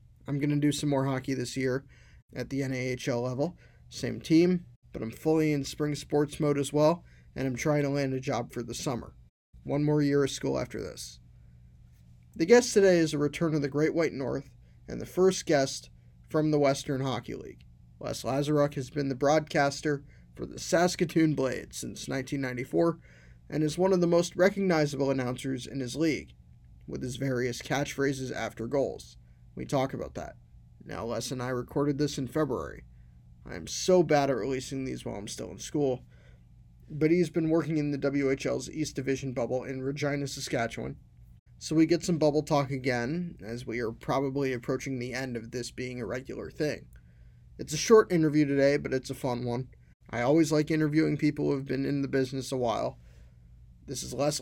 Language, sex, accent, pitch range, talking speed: English, male, American, 115-150 Hz, 190 wpm